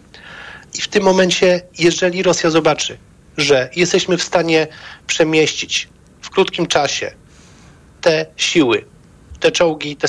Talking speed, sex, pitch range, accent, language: 120 wpm, male, 155-180 Hz, native, Polish